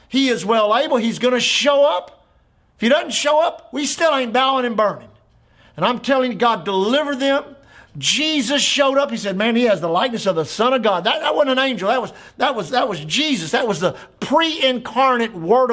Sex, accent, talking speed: male, American, 225 wpm